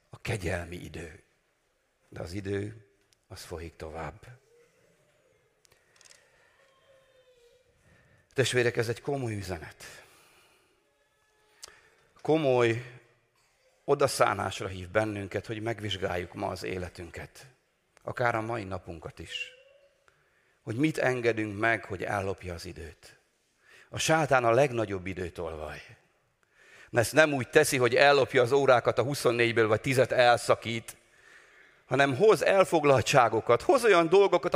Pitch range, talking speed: 105-175 Hz, 105 wpm